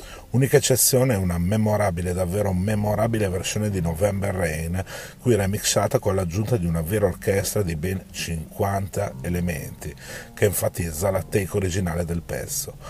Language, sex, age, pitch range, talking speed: Italian, male, 40-59, 85-105 Hz, 140 wpm